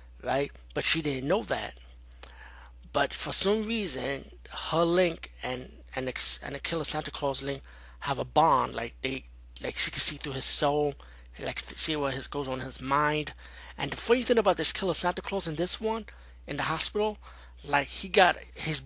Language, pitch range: English, 125-165 Hz